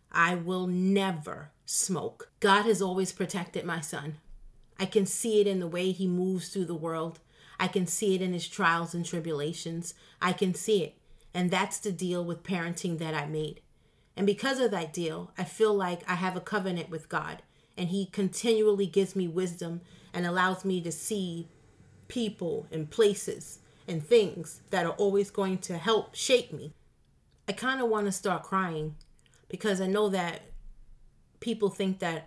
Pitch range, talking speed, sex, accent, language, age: 170-200 Hz, 175 wpm, female, American, English, 30-49